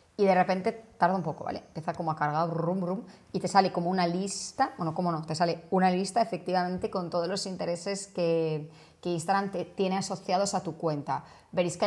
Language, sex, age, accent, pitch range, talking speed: Spanish, female, 30-49, Spanish, 160-190 Hz, 205 wpm